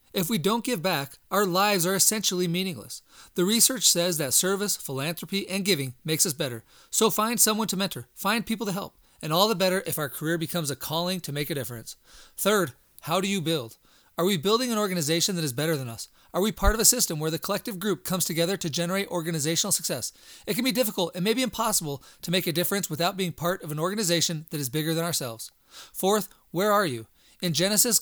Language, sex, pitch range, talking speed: English, male, 160-200 Hz, 220 wpm